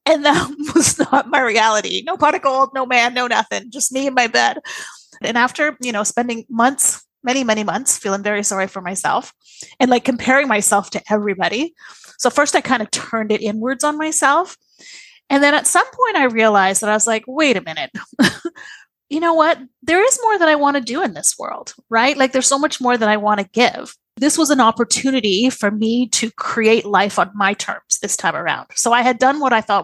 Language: English